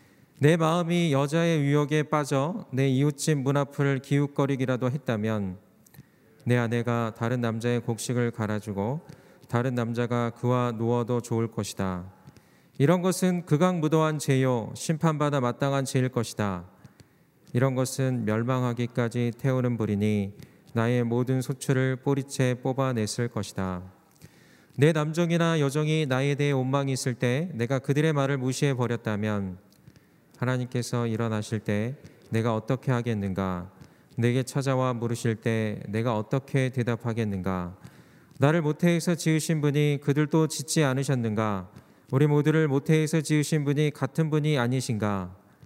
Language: Korean